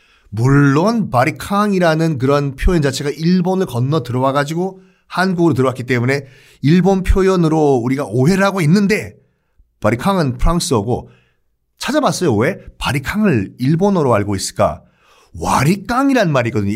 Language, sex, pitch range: Korean, male, 115-170 Hz